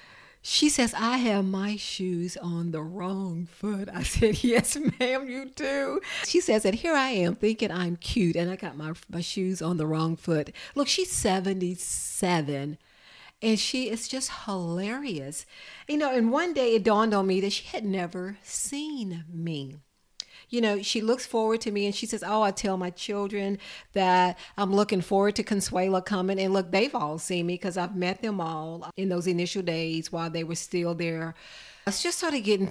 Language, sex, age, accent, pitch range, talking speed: English, female, 50-69, American, 175-220 Hz, 195 wpm